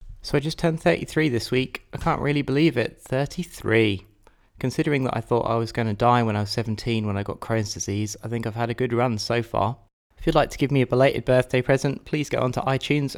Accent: British